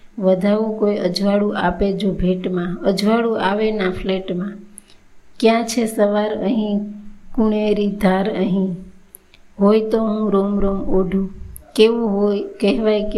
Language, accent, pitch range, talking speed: Gujarati, native, 190-210 Hz, 125 wpm